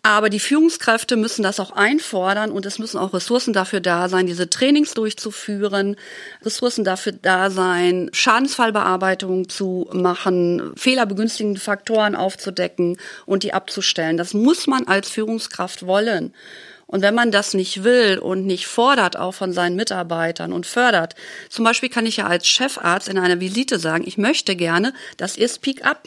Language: German